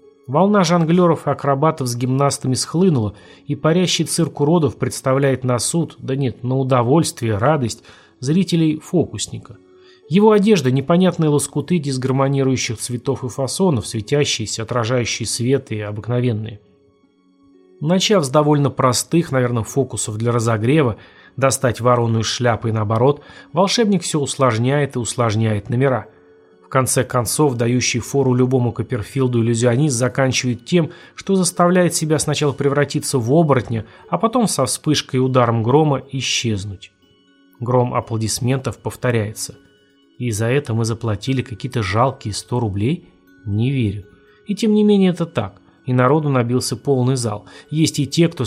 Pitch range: 115-145 Hz